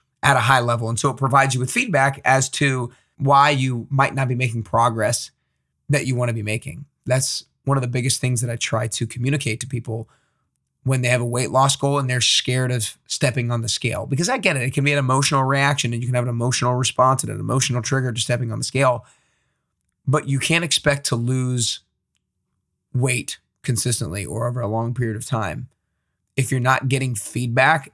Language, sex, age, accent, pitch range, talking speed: English, male, 20-39, American, 120-140 Hz, 215 wpm